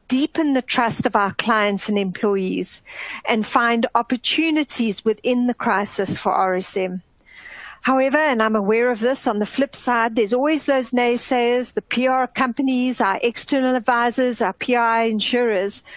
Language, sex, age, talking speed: English, female, 50-69, 145 wpm